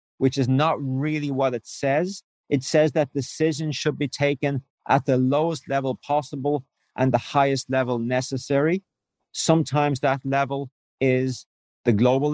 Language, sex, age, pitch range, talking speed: English, male, 50-69, 130-150 Hz, 145 wpm